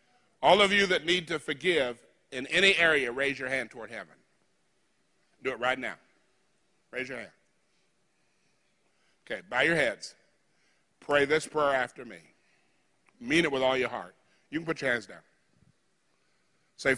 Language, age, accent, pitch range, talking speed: English, 50-69, American, 165-215 Hz, 155 wpm